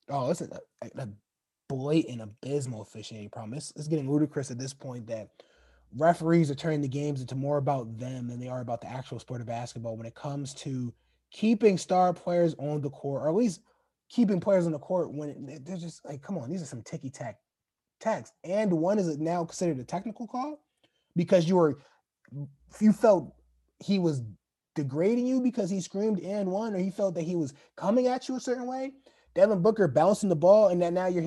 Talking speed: 200 wpm